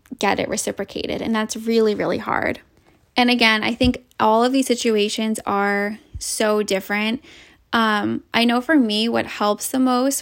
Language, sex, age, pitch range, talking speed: English, female, 10-29, 210-240 Hz, 165 wpm